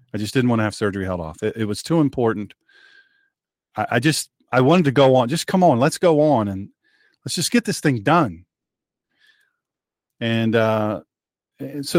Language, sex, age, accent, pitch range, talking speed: English, male, 40-59, American, 110-150 Hz, 190 wpm